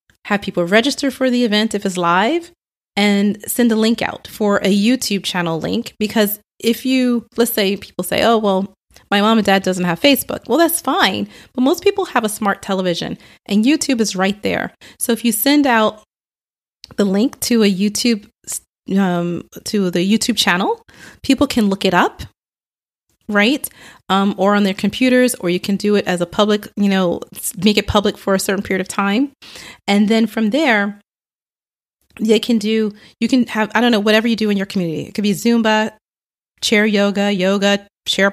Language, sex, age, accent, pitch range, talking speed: English, female, 30-49, American, 195-240 Hz, 190 wpm